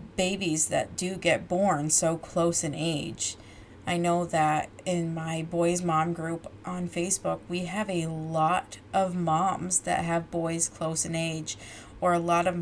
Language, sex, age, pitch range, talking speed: English, female, 30-49, 165-200 Hz, 165 wpm